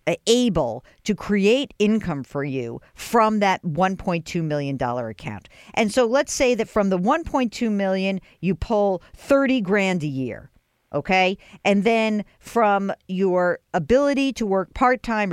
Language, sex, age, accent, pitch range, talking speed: English, female, 50-69, American, 160-225 Hz, 140 wpm